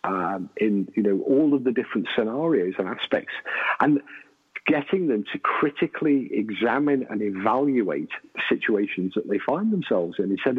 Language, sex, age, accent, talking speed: English, male, 40-59, British, 145 wpm